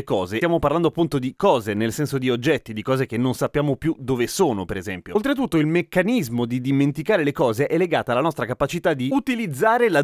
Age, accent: 30-49, native